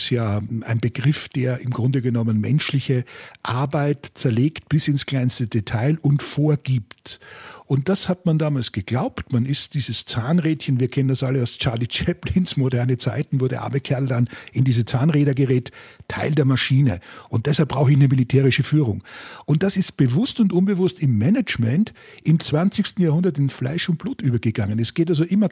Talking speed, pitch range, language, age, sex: 175 wpm, 125-165 Hz, German, 50-69, male